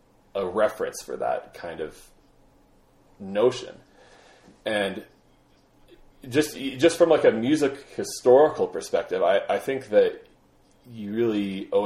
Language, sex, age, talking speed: English, male, 30-49, 115 wpm